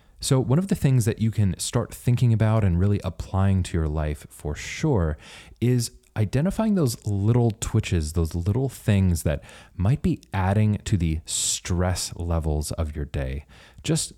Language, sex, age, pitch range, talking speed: English, male, 20-39, 85-110 Hz, 165 wpm